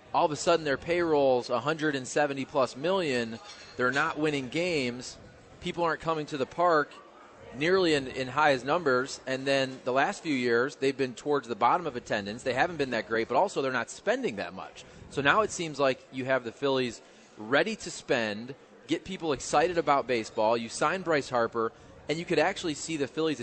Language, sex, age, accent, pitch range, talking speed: English, male, 30-49, American, 125-160 Hz, 195 wpm